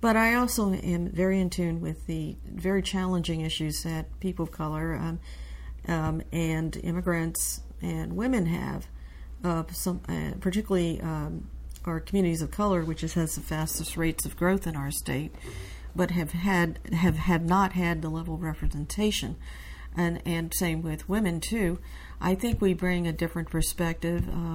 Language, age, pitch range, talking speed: English, 50-69, 155-175 Hz, 165 wpm